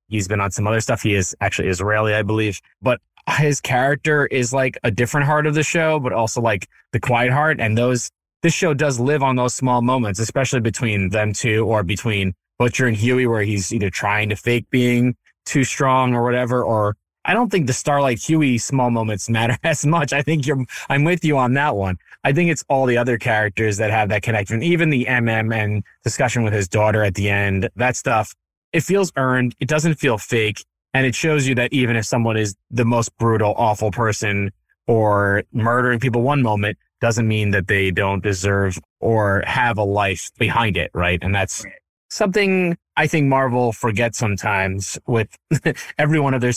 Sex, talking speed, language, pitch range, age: male, 200 wpm, English, 105-135 Hz, 20-39